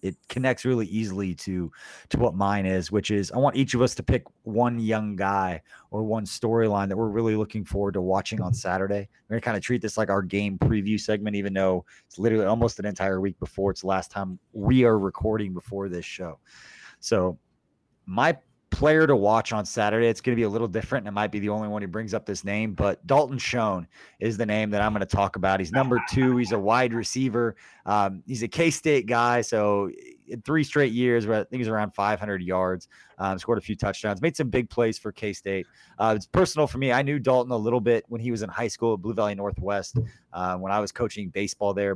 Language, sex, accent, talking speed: English, male, American, 235 wpm